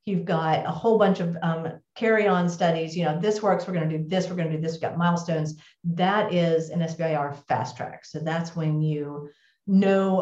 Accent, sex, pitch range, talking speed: American, female, 155-180 Hz, 215 wpm